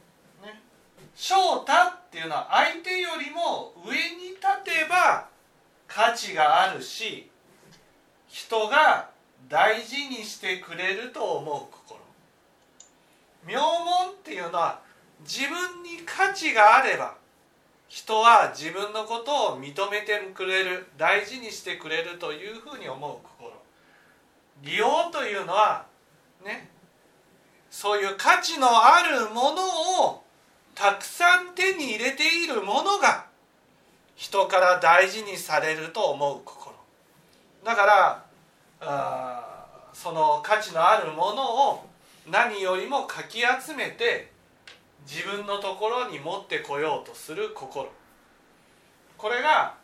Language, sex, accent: Japanese, male, native